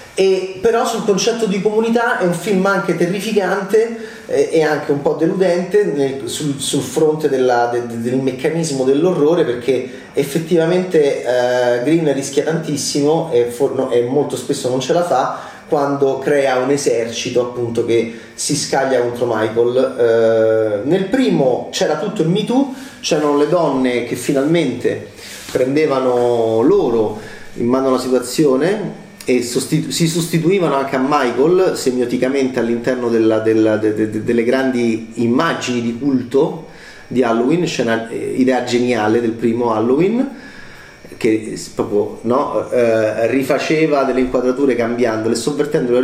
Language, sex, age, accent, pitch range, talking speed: Italian, male, 30-49, native, 120-170 Hz, 135 wpm